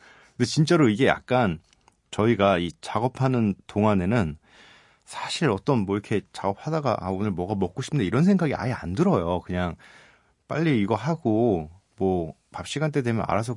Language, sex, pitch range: Korean, male, 90-130 Hz